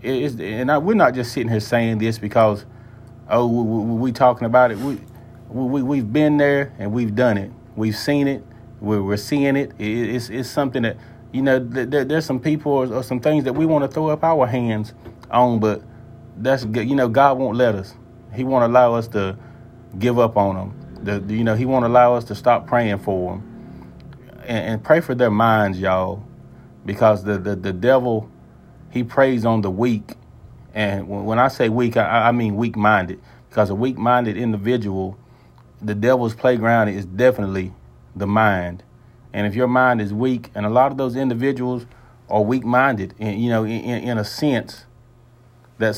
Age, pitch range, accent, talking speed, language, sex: 30-49, 105-125 Hz, American, 195 wpm, English, male